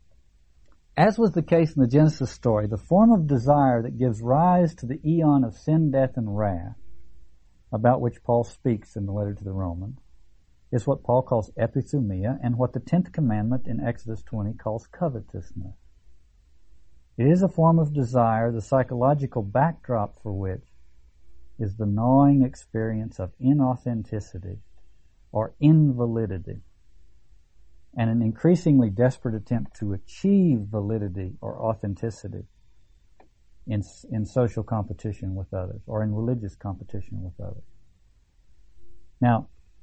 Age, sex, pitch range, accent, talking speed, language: 60-79, male, 95-140 Hz, American, 135 wpm, English